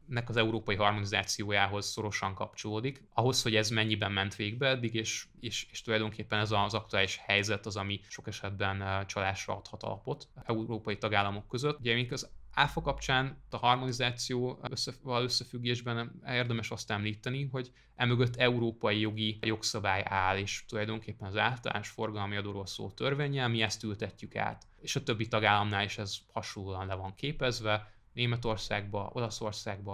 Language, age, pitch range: Hungarian, 20-39, 105-125 Hz